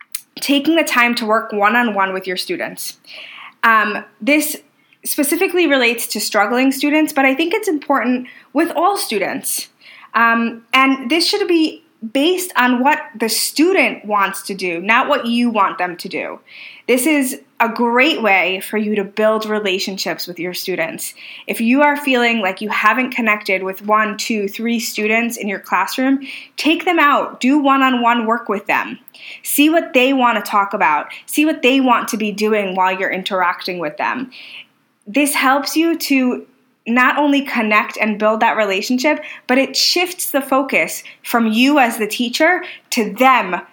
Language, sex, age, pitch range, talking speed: English, female, 20-39, 215-275 Hz, 170 wpm